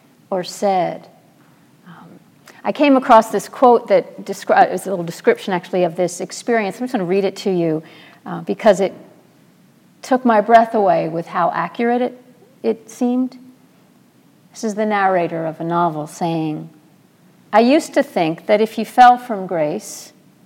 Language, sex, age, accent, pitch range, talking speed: English, female, 50-69, American, 190-250 Hz, 165 wpm